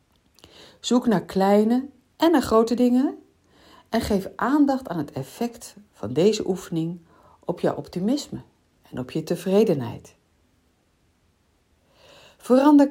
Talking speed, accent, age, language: 110 wpm, Dutch, 60-79, Dutch